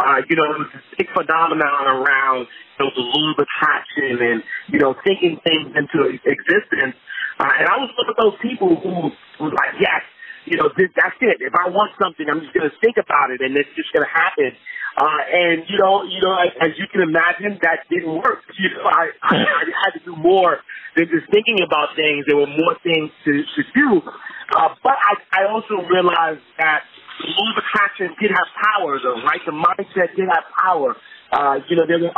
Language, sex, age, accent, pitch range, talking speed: English, male, 30-49, American, 155-215 Hz, 215 wpm